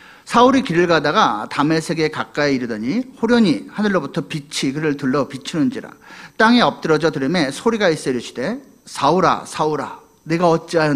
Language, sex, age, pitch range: Korean, male, 40-59, 155-235 Hz